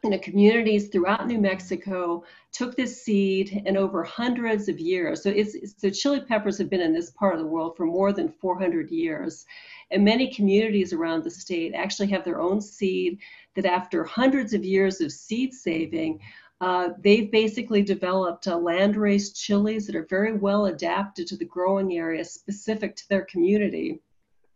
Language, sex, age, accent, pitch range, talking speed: English, female, 50-69, American, 180-210 Hz, 170 wpm